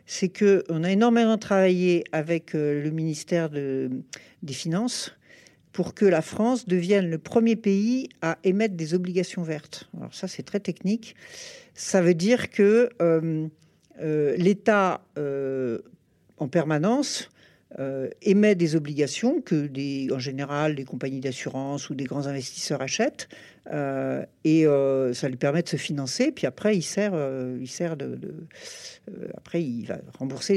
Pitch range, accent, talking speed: 155-210 Hz, French, 150 wpm